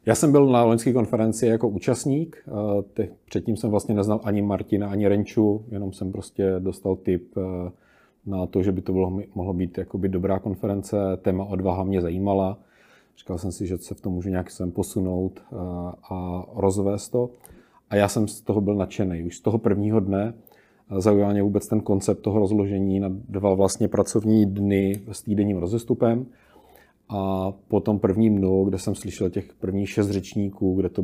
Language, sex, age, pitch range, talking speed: Czech, male, 40-59, 95-110 Hz, 170 wpm